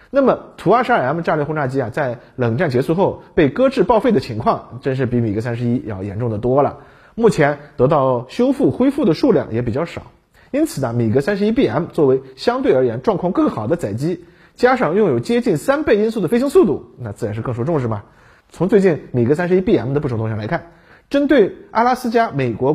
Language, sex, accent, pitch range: Chinese, male, native, 120-205 Hz